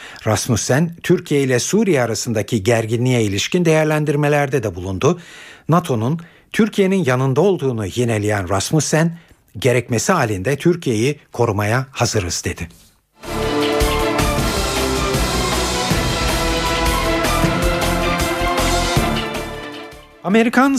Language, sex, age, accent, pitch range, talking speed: Turkish, male, 60-79, native, 115-170 Hz, 65 wpm